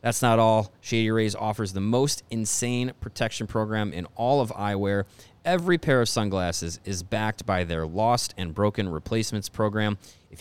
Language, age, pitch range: English, 30-49, 95-115 Hz